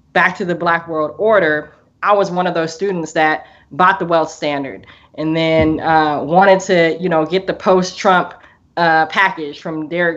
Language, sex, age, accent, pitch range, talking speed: English, female, 20-39, American, 160-185 Hz, 175 wpm